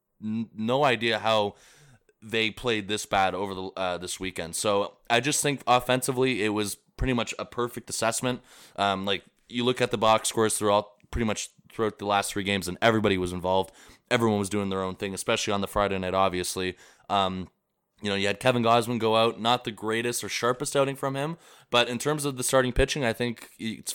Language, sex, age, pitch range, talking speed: English, male, 20-39, 100-120 Hz, 210 wpm